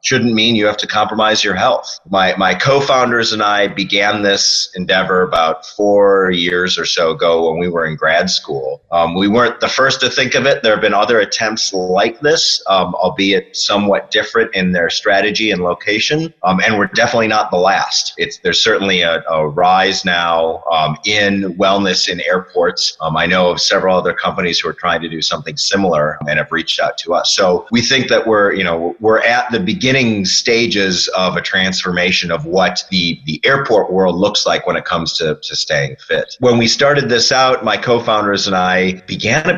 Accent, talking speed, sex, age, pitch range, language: American, 200 wpm, male, 30-49, 90-115 Hz, English